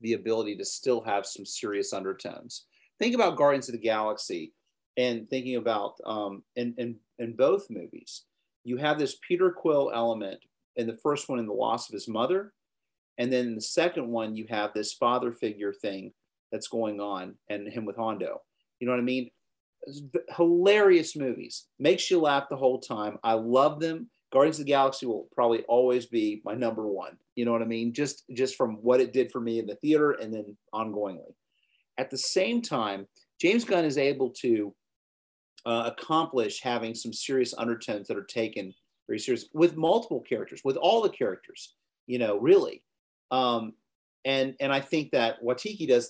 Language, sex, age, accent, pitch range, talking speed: English, male, 40-59, American, 115-140 Hz, 185 wpm